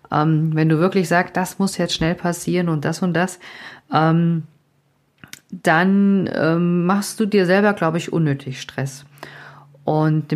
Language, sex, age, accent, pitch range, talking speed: German, female, 50-69, German, 155-195 Hz, 150 wpm